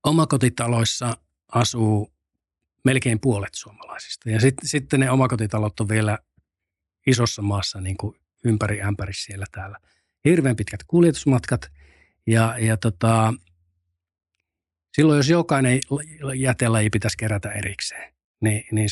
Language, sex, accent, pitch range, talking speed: Finnish, male, native, 100-125 Hz, 105 wpm